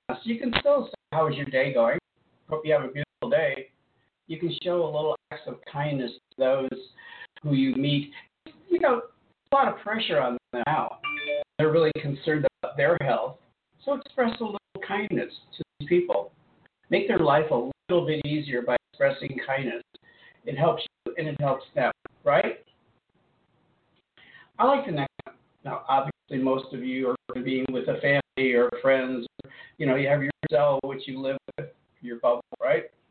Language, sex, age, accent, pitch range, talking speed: English, male, 50-69, American, 130-180 Hz, 180 wpm